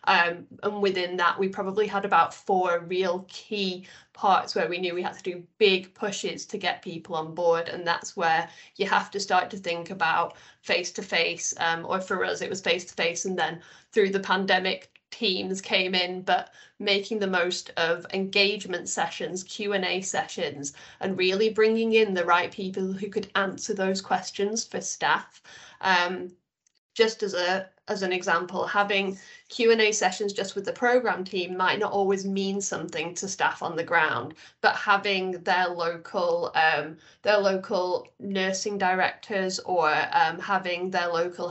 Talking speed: 170 wpm